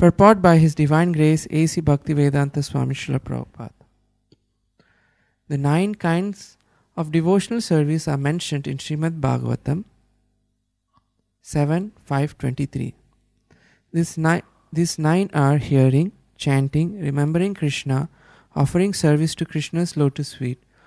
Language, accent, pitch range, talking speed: English, Indian, 140-170 Hz, 110 wpm